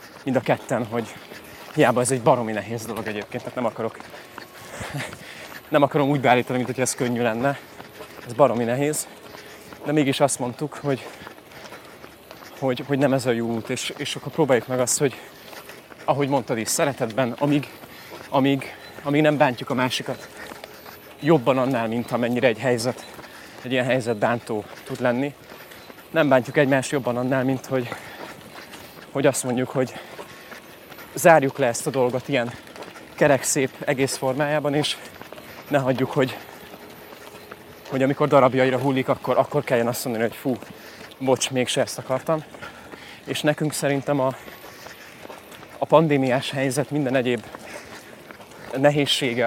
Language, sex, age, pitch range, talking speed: Hungarian, male, 30-49, 125-145 Hz, 140 wpm